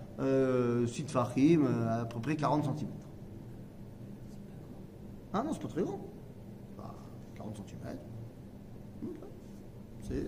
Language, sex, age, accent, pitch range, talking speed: French, male, 40-59, French, 125-175 Hz, 125 wpm